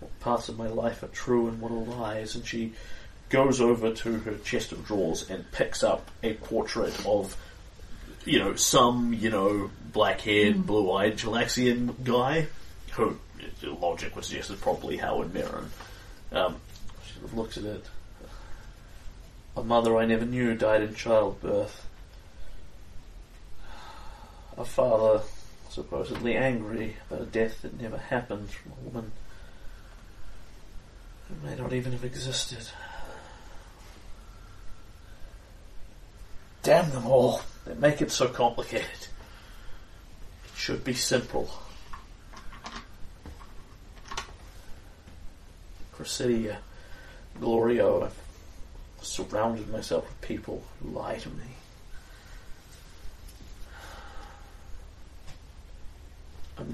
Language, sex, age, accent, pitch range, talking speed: English, male, 30-49, British, 85-115 Hz, 105 wpm